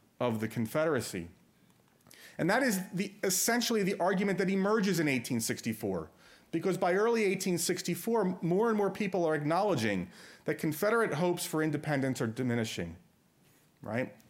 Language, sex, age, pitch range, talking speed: English, male, 40-59, 115-170 Hz, 135 wpm